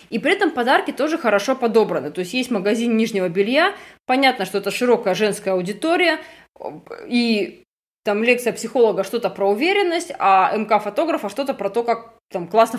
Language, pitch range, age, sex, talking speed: Russian, 210-275 Hz, 20-39, female, 160 wpm